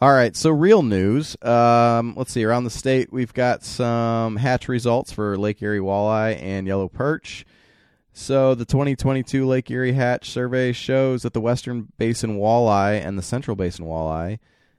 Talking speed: 165 wpm